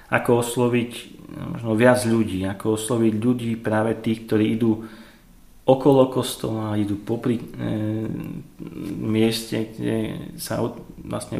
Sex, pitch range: male, 105-115 Hz